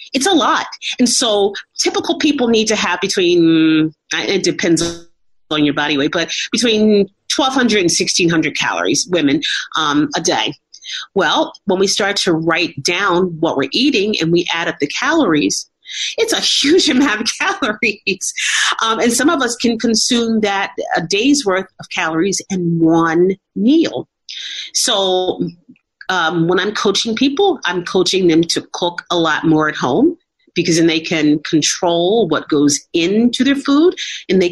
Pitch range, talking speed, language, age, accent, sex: 170-240 Hz, 160 wpm, English, 40-59, American, female